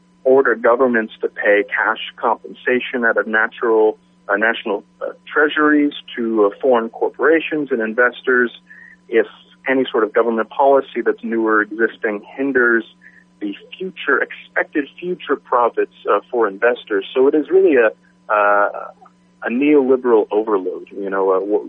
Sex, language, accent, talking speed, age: male, English, American, 140 wpm, 40-59